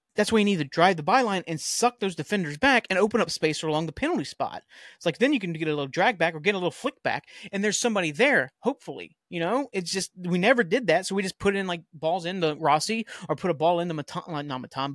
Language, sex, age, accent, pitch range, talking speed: English, male, 30-49, American, 150-200 Hz, 270 wpm